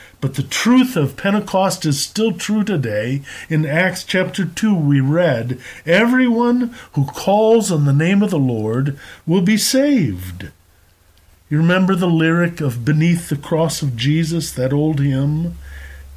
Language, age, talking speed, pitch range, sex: English, 50-69, 150 wpm, 125-190 Hz, male